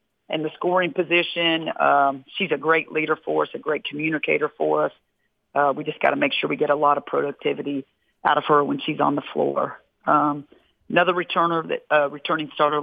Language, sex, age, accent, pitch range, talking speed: English, female, 40-59, American, 145-165 Hz, 205 wpm